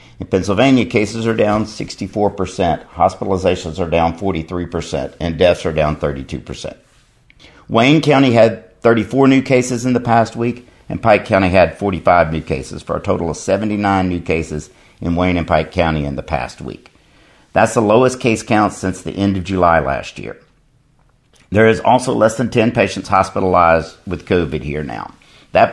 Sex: male